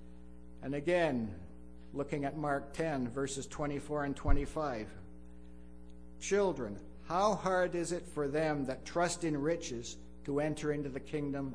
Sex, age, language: male, 60-79, English